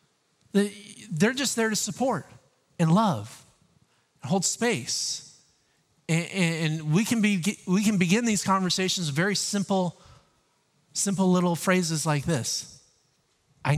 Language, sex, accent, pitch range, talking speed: English, male, American, 125-155 Hz, 120 wpm